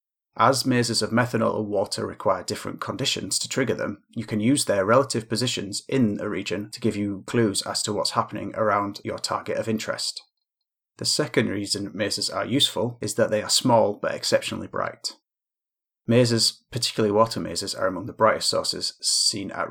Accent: British